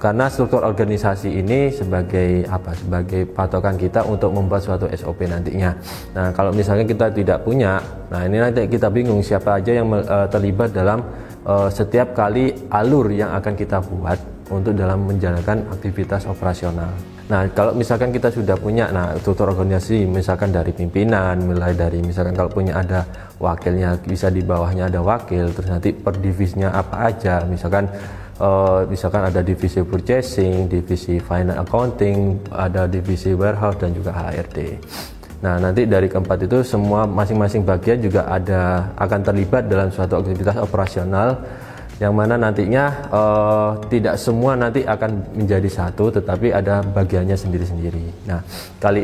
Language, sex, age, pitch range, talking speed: Indonesian, male, 20-39, 90-110 Hz, 145 wpm